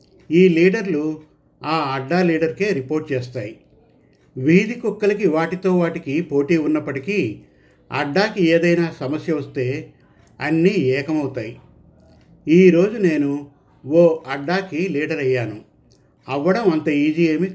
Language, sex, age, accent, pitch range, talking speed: Telugu, male, 50-69, native, 135-175 Hz, 100 wpm